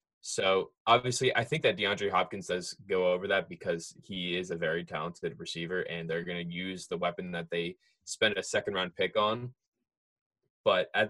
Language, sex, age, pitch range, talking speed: English, male, 20-39, 90-120 Hz, 190 wpm